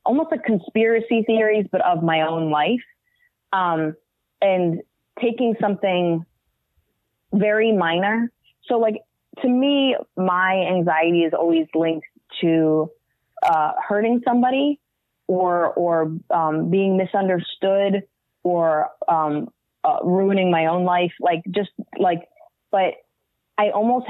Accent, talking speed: American, 115 wpm